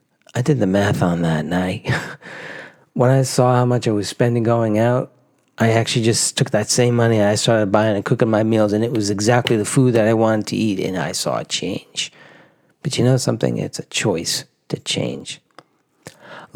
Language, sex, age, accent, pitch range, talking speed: English, male, 40-59, American, 110-150 Hz, 210 wpm